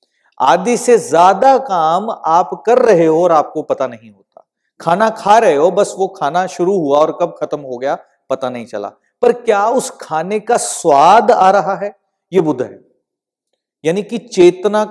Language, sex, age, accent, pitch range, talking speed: Hindi, male, 40-59, native, 160-240 Hz, 180 wpm